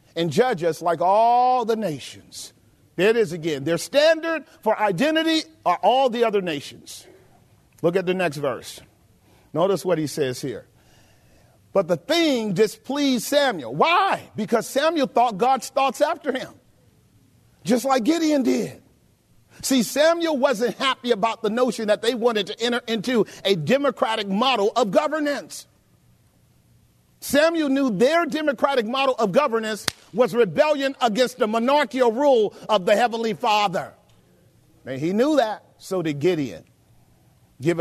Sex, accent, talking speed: male, American, 145 wpm